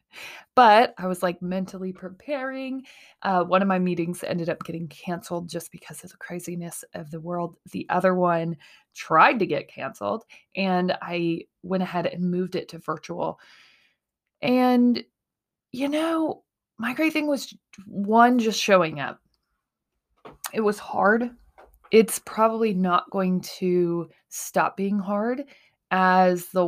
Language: English